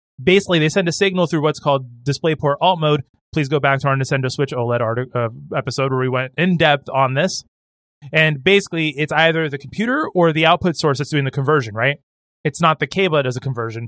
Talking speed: 220 wpm